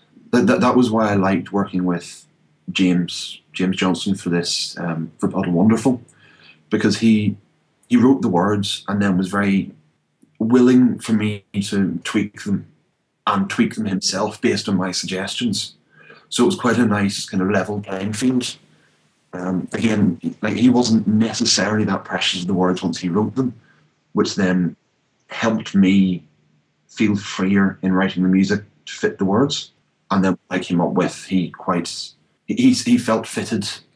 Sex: male